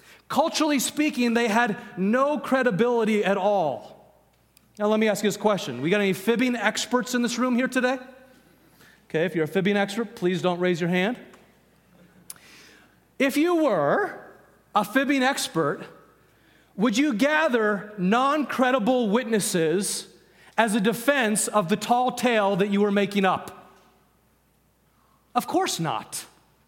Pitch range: 195-255 Hz